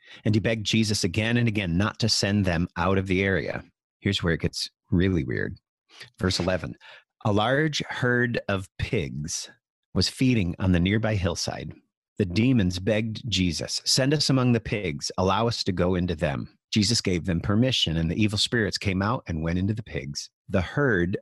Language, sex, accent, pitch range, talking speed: English, male, American, 95-115 Hz, 185 wpm